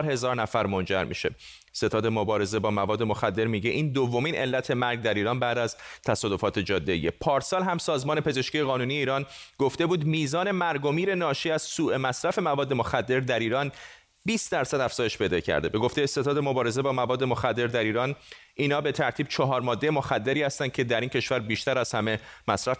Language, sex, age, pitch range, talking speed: Persian, male, 30-49, 115-145 Hz, 180 wpm